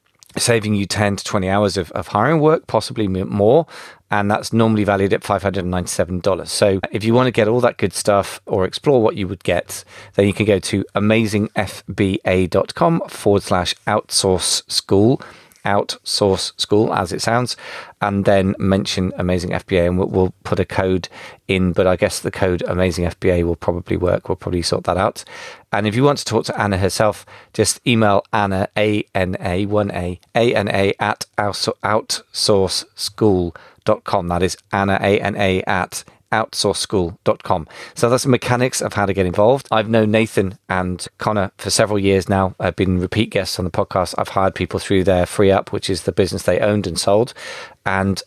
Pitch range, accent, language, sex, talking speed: 95-105 Hz, British, English, male, 185 wpm